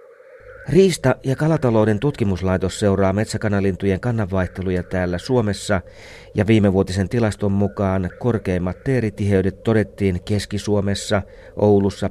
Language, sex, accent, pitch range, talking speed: Finnish, male, native, 95-120 Hz, 90 wpm